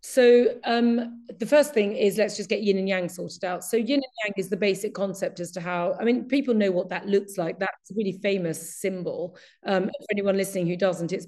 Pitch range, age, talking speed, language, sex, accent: 180-215 Hz, 40-59, 240 wpm, English, female, British